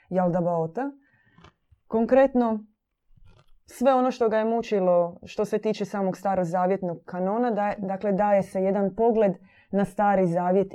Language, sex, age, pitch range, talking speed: Croatian, female, 20-39, 175-215 Hz, 130 wpm